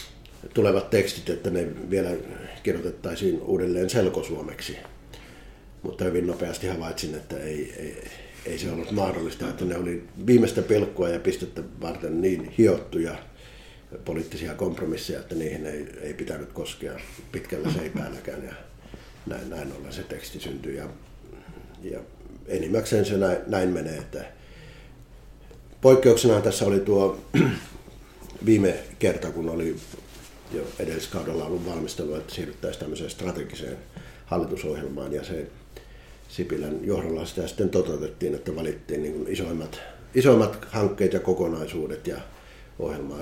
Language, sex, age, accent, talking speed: Finnish, male, 60-79, native, 120 wpm